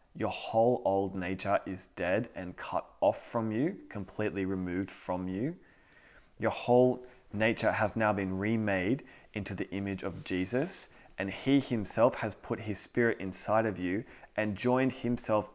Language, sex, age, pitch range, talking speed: English, male, 20-39, 95-115 Hz, 155 wpm